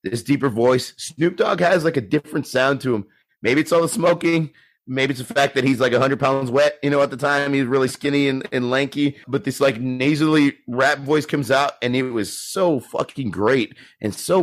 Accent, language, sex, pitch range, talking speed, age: American, English, male, 120-140 Hz, 225 wpm, 30-49